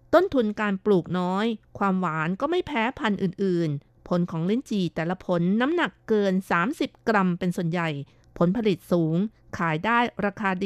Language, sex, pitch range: Thai, female, 175-210 Hz